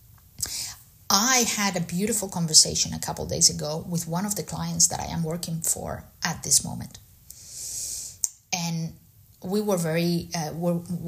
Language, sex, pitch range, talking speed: English, female, 165-200 Hz, 155 wpm